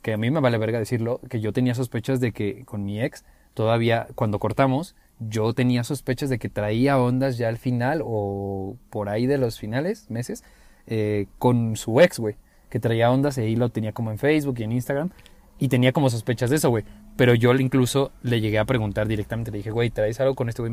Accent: Mexican